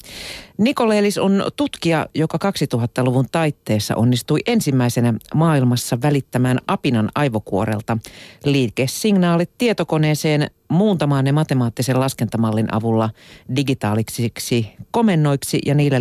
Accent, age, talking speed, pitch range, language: native, 40-59, 85 wpm, 125-160 Hz, Finnish